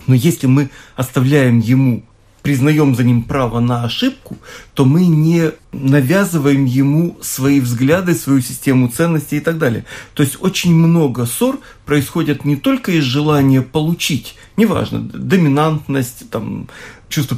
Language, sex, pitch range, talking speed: Russian, male, 130-170 Hz, 130 wpm